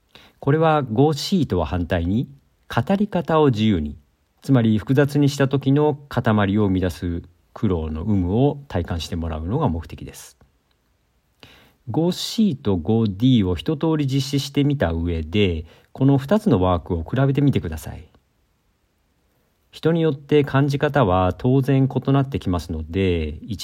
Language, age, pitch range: Japanese, 50-69, 85-135 Hz